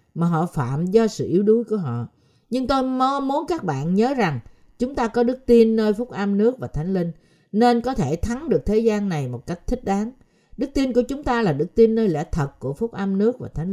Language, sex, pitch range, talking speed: Vietnamese, female, 160-245 Hz, 255 wpm